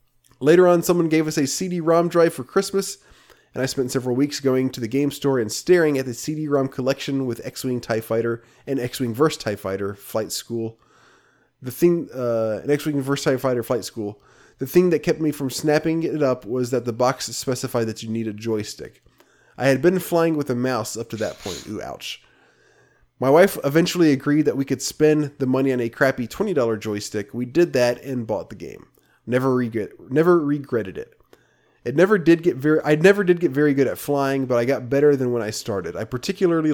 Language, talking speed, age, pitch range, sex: English, 205 wpm, 20-39, 120-155 Hz, male